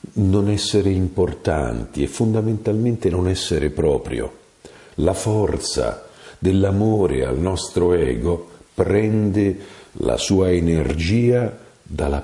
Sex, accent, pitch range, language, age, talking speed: male, native, 85-110 Hz, Italian, 50-69, 95 wpm